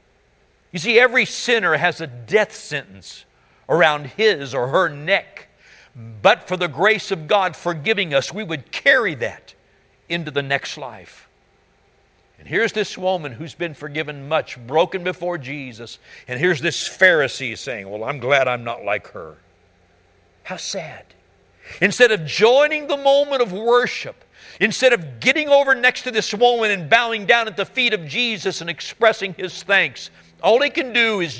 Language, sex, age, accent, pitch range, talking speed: English, male, 60-79, American, 115-195 Hz, 165 wpm